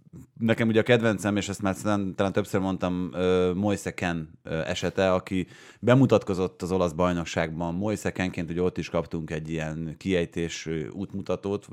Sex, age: male, 30-49